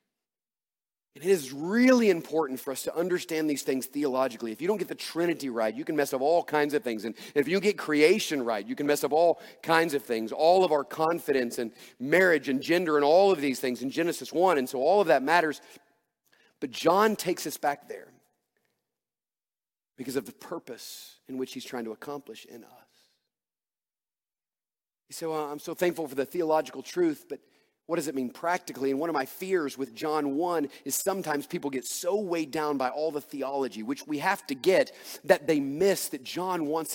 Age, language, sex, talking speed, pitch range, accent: 40-59, English, male, 205 wpm, 125-170 Hz, American